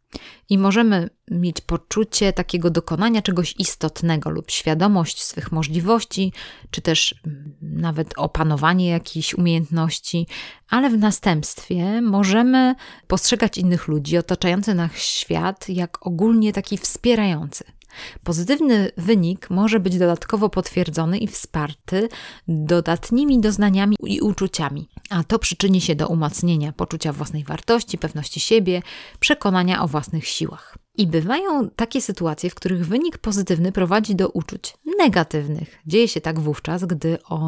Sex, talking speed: female, 125 wpm